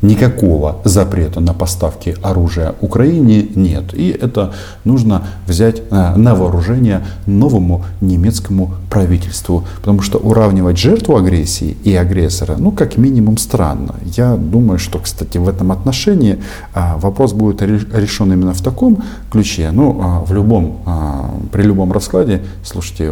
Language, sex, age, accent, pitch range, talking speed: Russian, male, 40-59, native, 90-110 Hz, 125 wpm